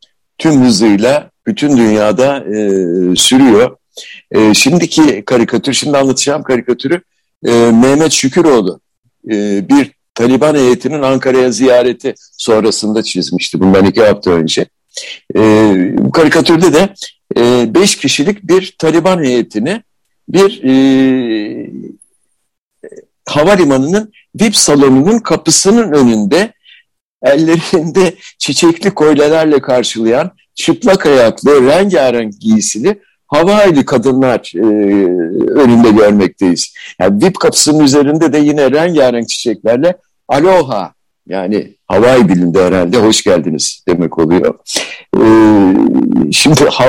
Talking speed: 95 wpm